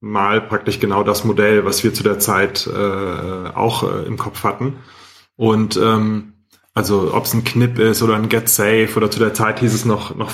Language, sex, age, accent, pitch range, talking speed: German, male, 30-49, German, 105-125 Hz, 210 wpm